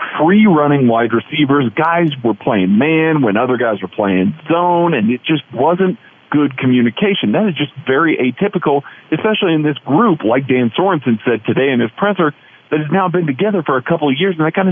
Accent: American